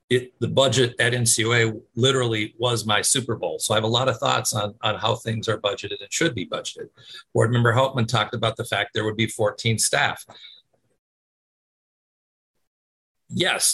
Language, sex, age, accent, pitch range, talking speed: English, male, 50-69, American, 110-130 Hz, 175 wpm